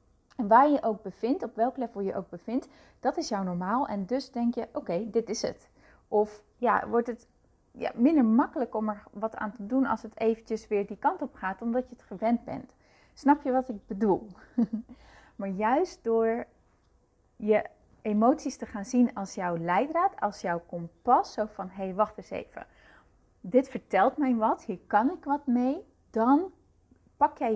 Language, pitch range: Dutch, 200-255 Hz